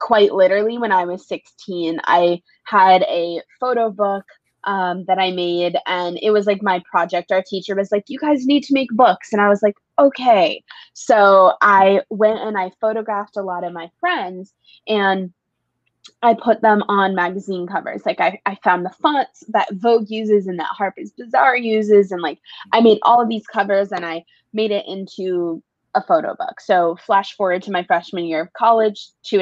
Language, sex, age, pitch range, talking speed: English, female, 20-39, 180-220 Hz, 190 wpm